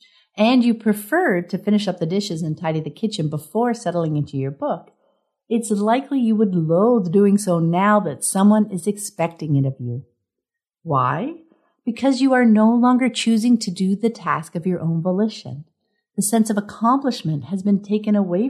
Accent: American